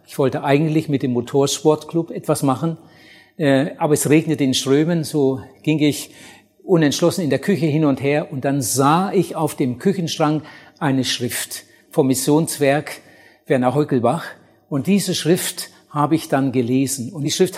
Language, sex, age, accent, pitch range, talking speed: German, male, 60-79, German, 140-170 Hz, 155 wpm